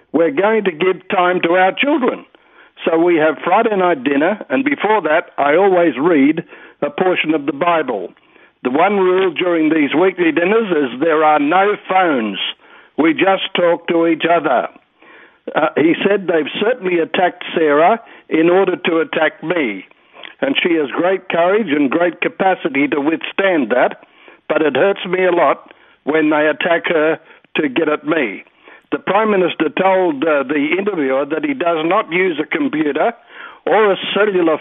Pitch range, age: 160-205 Hz, 60-79